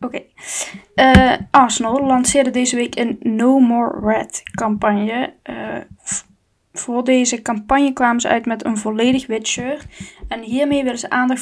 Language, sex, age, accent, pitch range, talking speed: Dutch, female, 10-29, Dutch, 225-255 Hz, 160 wpm